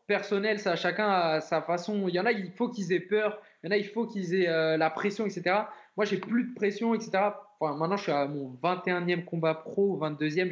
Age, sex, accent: 20-39, male, French